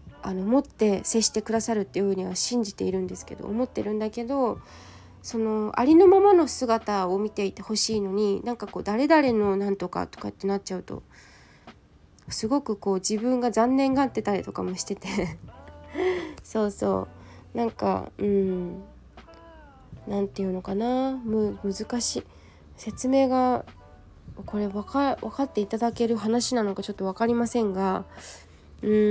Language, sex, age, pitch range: Japanese, female, 20-39, 195-270 Hz